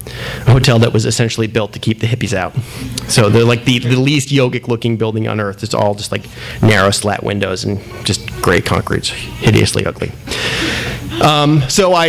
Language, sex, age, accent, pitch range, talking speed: English, male, 30-49, American, 115-140 Hz, 185 wpm